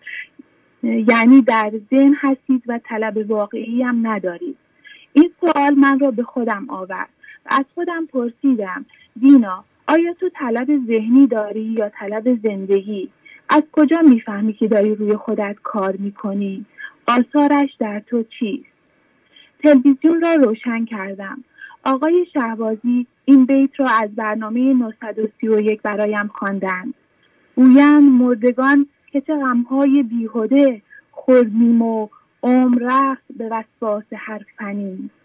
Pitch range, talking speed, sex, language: 220-280 Hz, 115 wpm, female, English